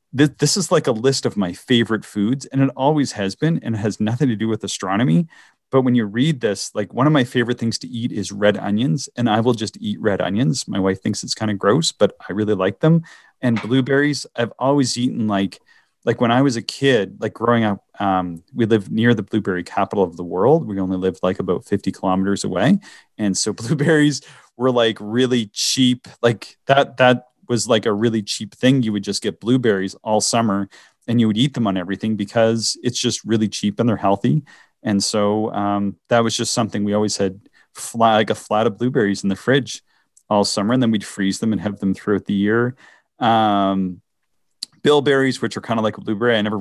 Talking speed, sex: 220 wpm, male